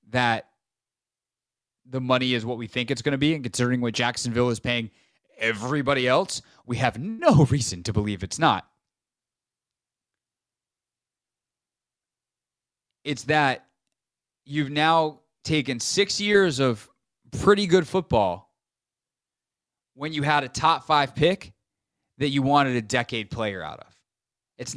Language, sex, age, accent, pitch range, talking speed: English, male, 20-39, American, 115-150 Hz, 130 wpm